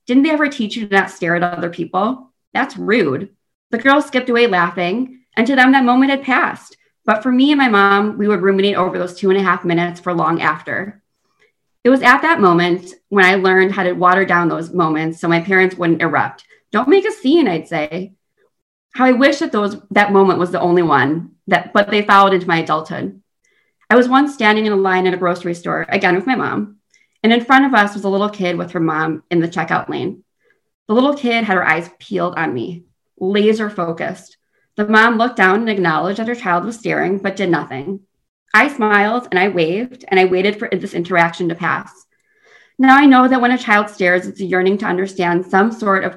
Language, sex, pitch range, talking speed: English, female, 175-235 Hz, 225 wpm